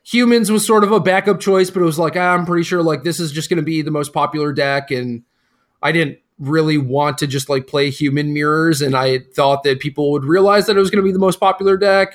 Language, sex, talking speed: English, male, 255 wpm